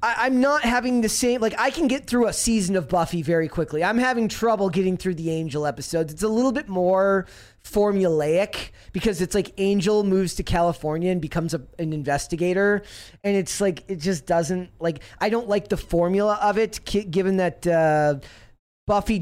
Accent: American